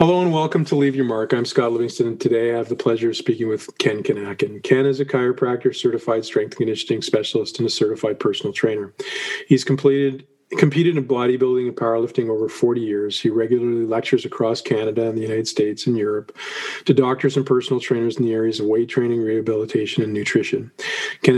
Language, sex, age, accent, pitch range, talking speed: English, male, 40-59, American, 115-140 Hz, 200 wpm